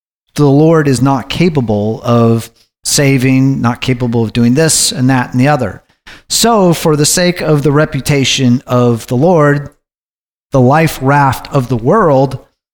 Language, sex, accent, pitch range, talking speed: English, male, American, 125-155 Hz, 155 wpm